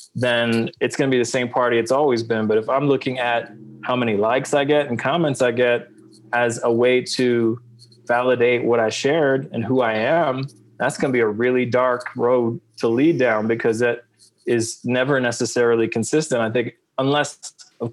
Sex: male